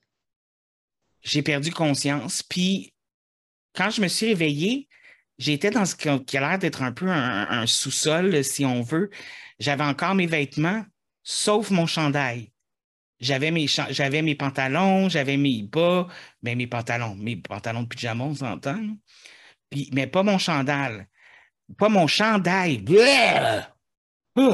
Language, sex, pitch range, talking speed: French, male, 130-170 Hz, 140 wpm